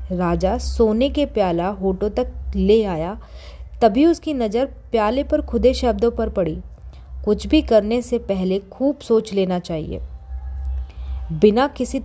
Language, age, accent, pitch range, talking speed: Hindi, 20-39, native, 175-235 Hz, 140 wpm